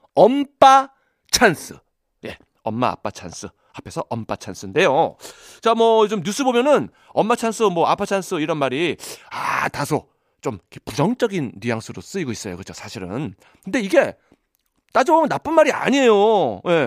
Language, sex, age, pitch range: Korean, male, 40-59, 190-265 Hz